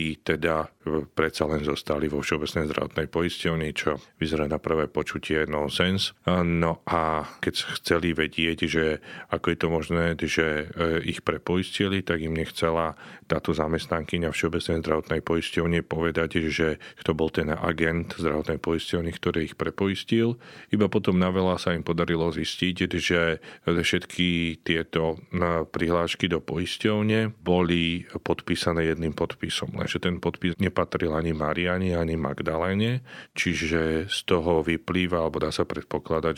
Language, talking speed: Slovak, 130 wpm